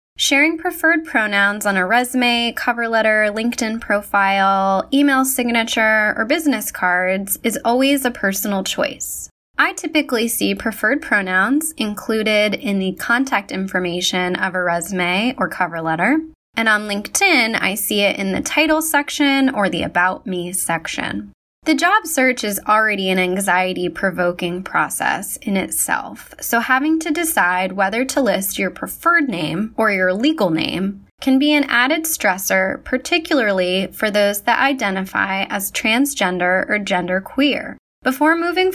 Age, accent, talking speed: 10-29, American, 140 wpm